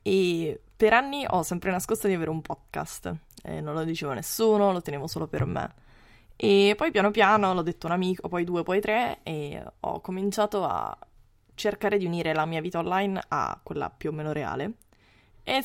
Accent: native